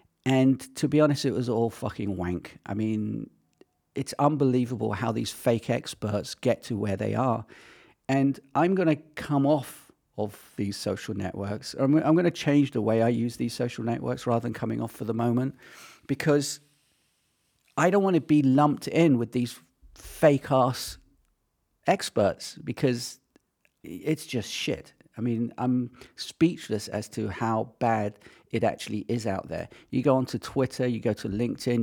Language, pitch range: English, 110-135 Hz